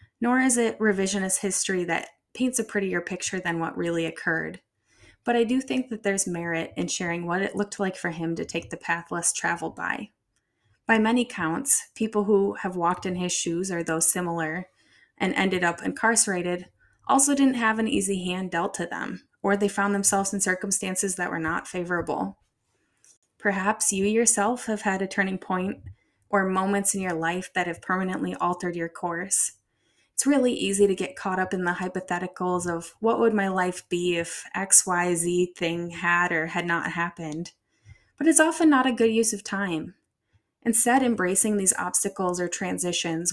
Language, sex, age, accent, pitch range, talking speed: English, female, 10-29, American, 170-205 Hz, 185 wpm